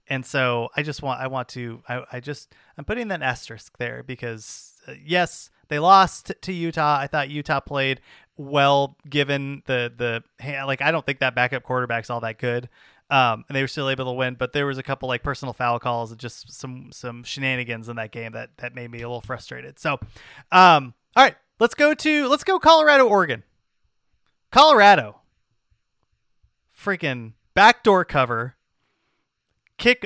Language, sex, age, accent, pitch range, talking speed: English, male, 30-49, American, 125-170 Hz, 180 wpm